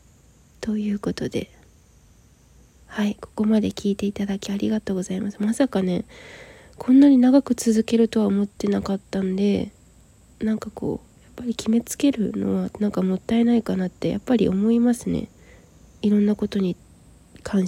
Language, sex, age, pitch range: Japanese, female, 20-39, 195-235 Hz